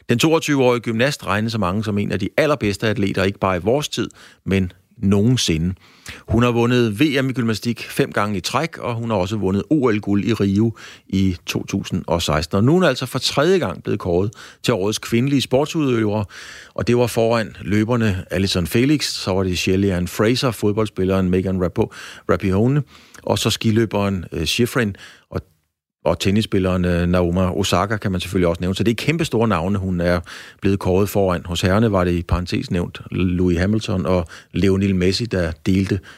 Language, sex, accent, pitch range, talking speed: Danish, male, native, 95-120 Hz, 180 wpm